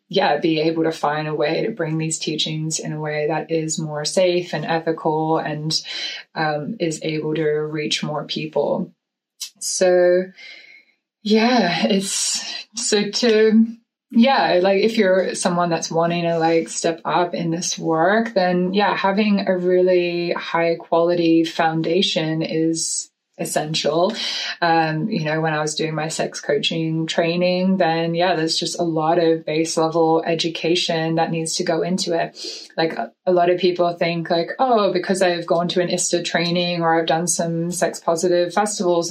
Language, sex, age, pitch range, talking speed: English, female, 20-39, 160-185 Hz, 165 wpm